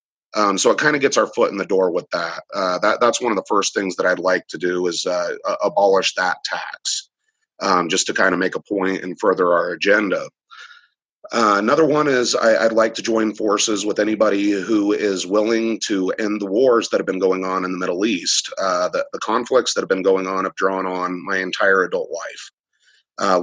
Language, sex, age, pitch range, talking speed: English, male, 30-49, 95-110 Hz, 225 wpm